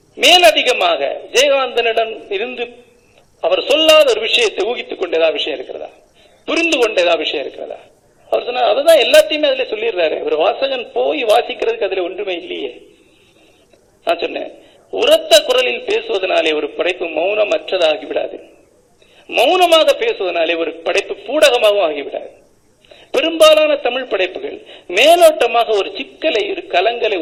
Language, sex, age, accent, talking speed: Tamil, male, 50-69, native, 75 wpm